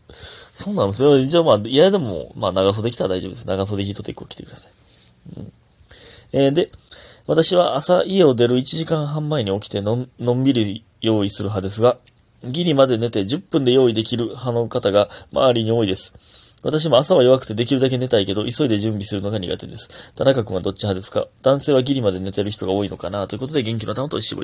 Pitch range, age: 105-170 Hz, 20-39